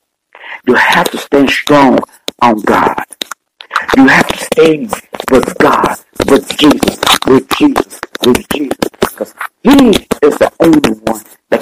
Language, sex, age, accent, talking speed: English, male, 60-79, American, 135 wpm